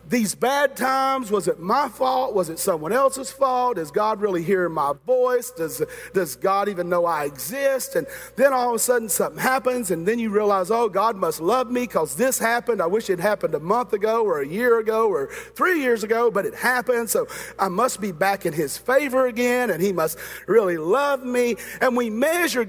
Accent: American